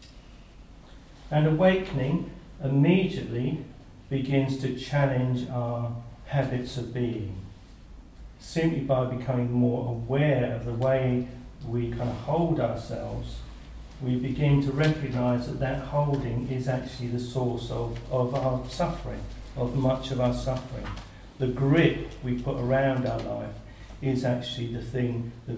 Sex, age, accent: male, 50-69, British